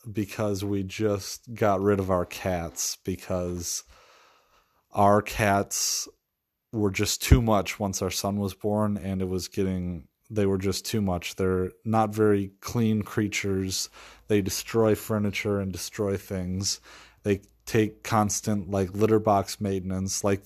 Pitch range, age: 95-105 Hz, 30-49